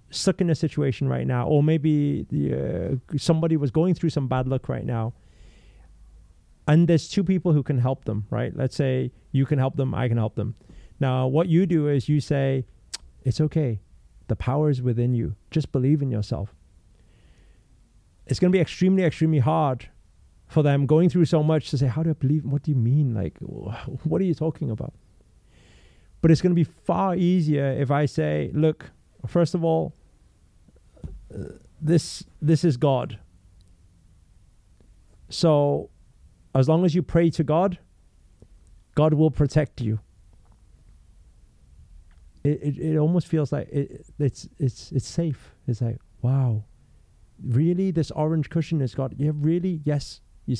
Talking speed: 165 wpm